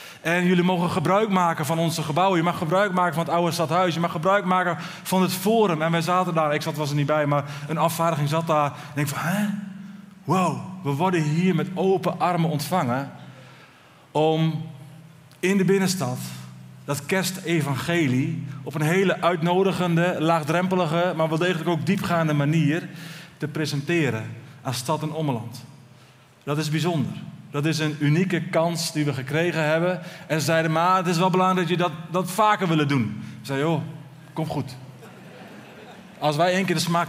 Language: Dutch